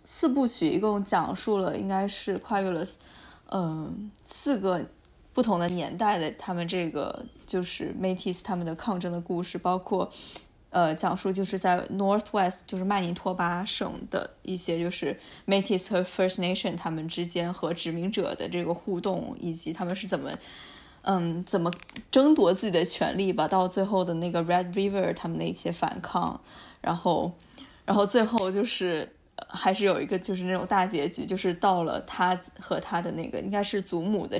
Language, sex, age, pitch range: Chinese, female, 20-39, 175-205 Hz